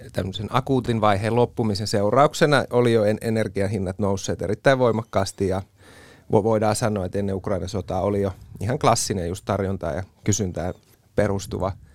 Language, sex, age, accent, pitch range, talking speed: Finnish, male, 30-49, native, 100-115 Hz, 140 wpm